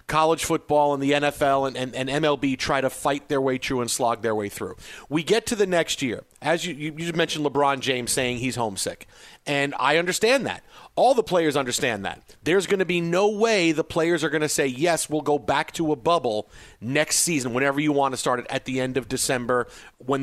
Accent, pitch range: American, 130-160 Hz